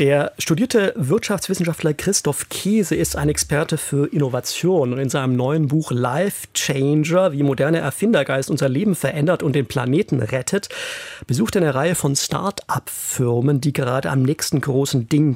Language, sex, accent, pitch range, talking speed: German, male, German, 135-165 Hz, 150 wpm